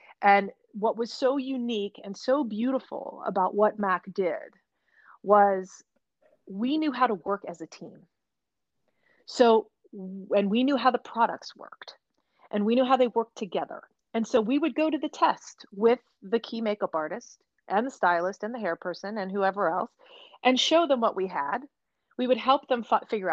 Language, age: English, 30-49